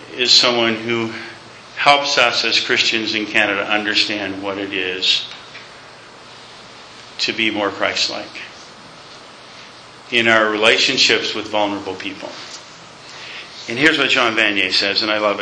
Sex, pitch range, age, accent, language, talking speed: male, 105-150 Hz, 50-69, American, English, 125 wpm